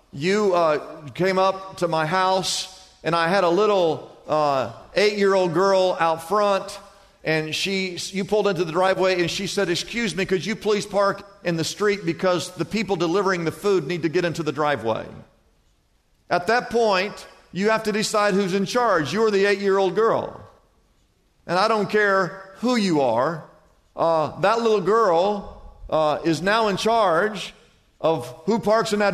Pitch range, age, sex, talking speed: 185-225 Hz, 50-69, male, 170 wpm